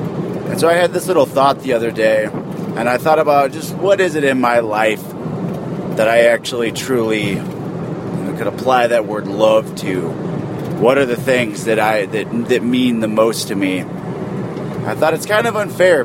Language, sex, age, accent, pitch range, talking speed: English, male, 30-49, American, 115-155 Hz, 195 wpm